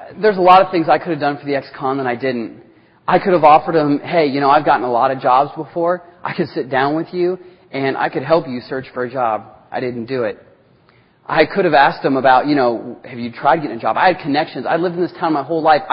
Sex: male